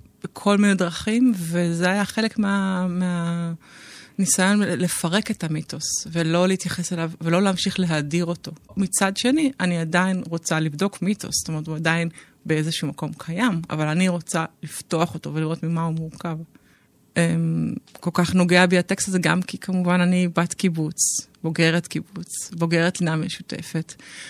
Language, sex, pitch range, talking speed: Hebrew, female, 165-195 Hz, 145 wpm